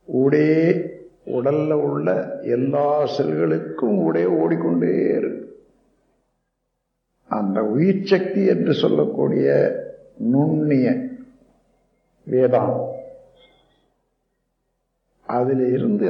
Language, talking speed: Tamil, 60 wpm